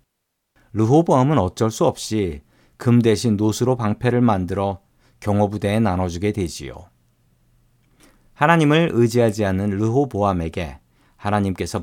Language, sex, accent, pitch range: Korean, male, native, 100-130 Hz